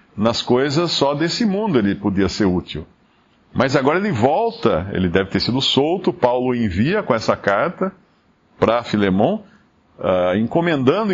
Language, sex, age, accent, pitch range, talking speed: Portuguese, male, 50-69, Brazilian, 105-165 Hz, 140 wpm